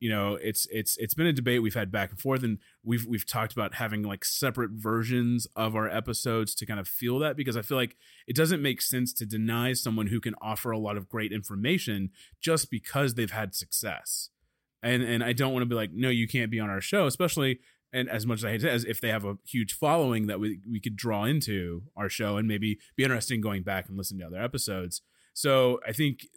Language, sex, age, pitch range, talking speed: English, male, 30-49, 100-125 Hz, 245 wpm